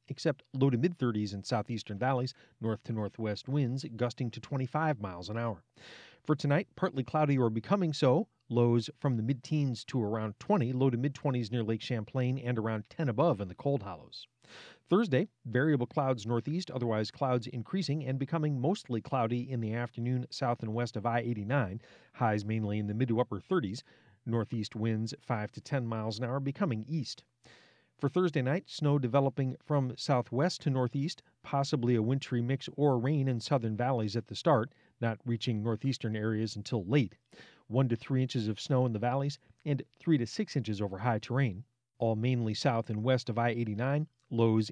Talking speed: 180 wpm